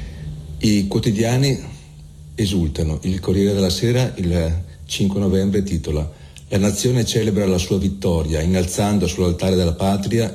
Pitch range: 85-100 Hz